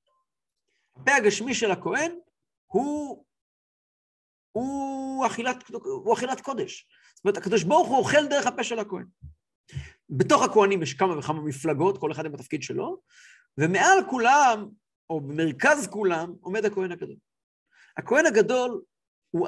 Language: Hebrew